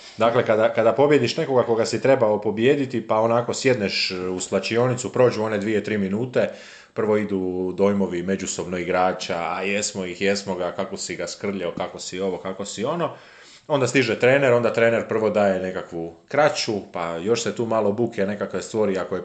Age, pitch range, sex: 30-49, 95-115 Hz, male